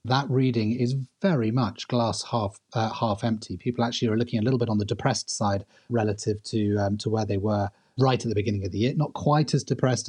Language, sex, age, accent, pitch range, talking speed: English, male, 30-49, British, 115-135 Hz, 230 wpm